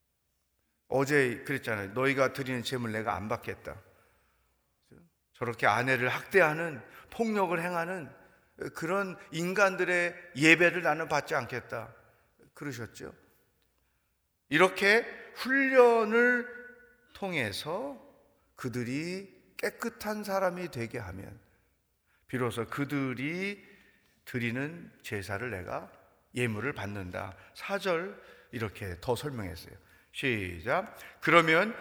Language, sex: Korean, male